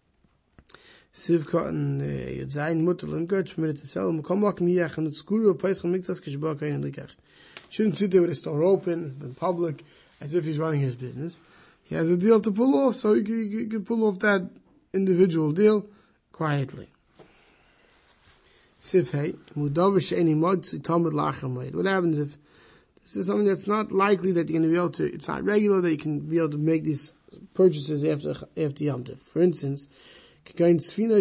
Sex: male